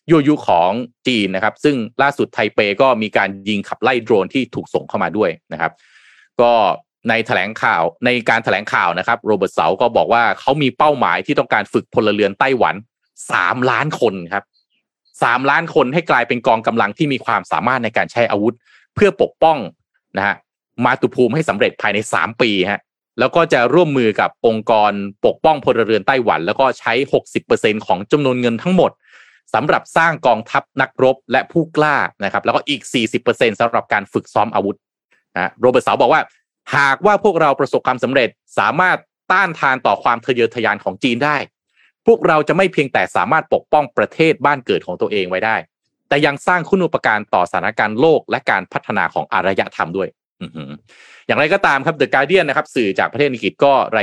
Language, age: Thai, 30-49